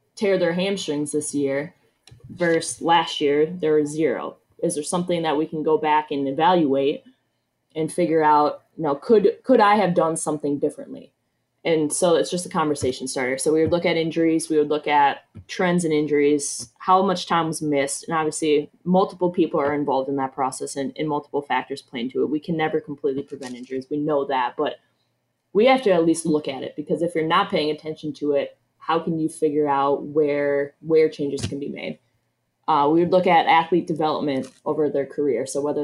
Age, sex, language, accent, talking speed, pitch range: 20-39, female, English, American, 210 wpm, 145-170 Hz